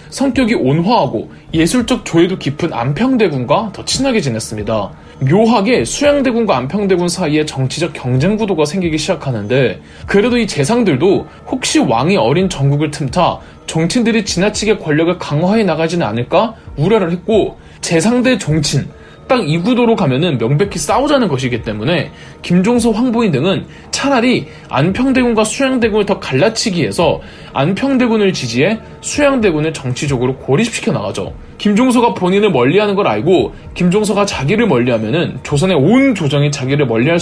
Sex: male